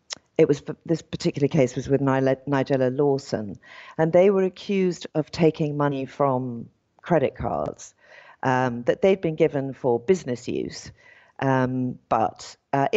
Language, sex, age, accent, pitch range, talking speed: English, female, 40-59, British, 135-175 Hz, 140 wpm